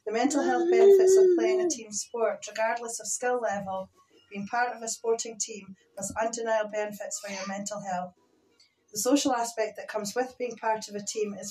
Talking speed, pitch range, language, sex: 200 wpm, 200-230 Hz, English, female